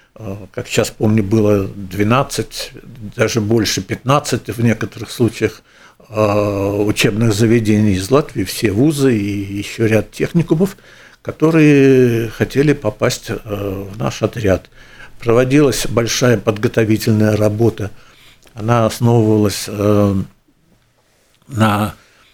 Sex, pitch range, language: male, 110-135 Hz, Russian